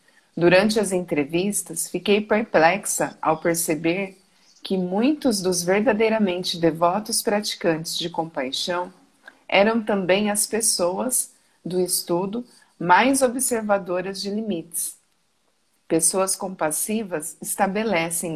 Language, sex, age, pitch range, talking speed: Portuguese, female, 40-59, 165-205 Hz, 90 wpm